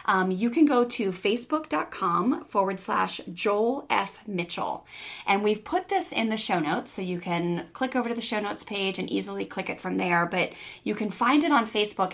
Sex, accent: female, American